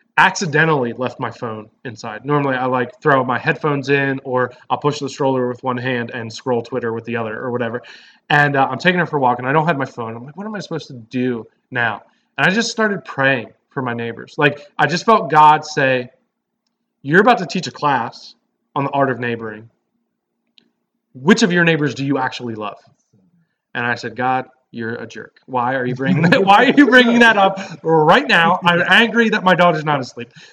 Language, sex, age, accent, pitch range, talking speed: English, male, 20-39, American, 125-170 Hz, 220 wpm